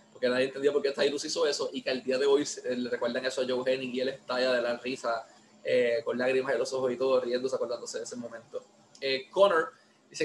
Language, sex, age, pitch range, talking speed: Spanish, male, 20-39, 125-160 Hz, 245 wpm